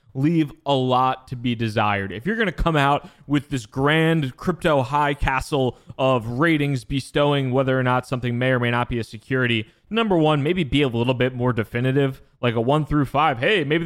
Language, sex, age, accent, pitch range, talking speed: English, male, 20-39, American, 120-145 Hz, 210 wpm